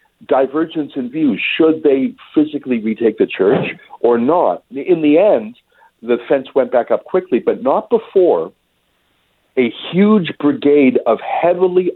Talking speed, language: 140 wpm, English